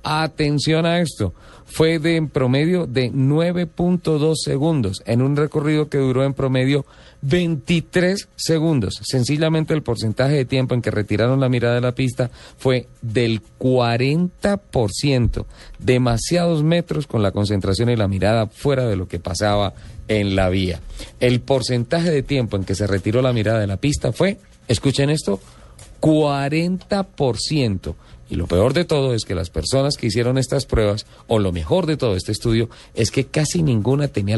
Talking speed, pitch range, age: 160 wpm, 110-150 Hz, 40-59